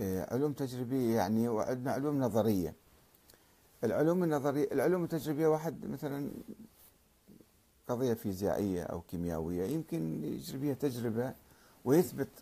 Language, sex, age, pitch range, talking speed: Arabic, male, 50-69, 95-135 Hz, 95 wpm